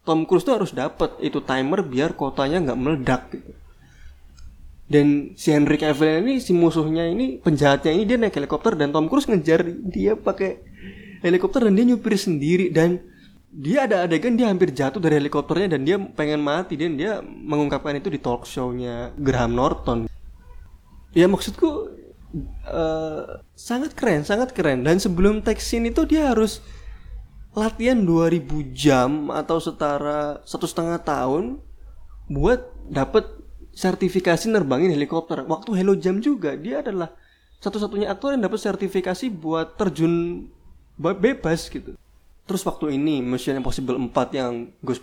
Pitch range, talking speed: 135-195 Hz, 140 wpm